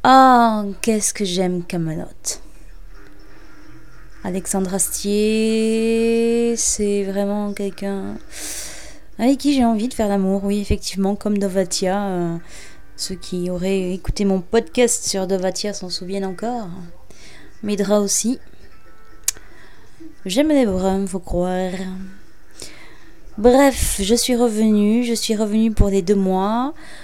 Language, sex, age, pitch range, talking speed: French, female, 20-39, 185-230 Hz, 115 wpm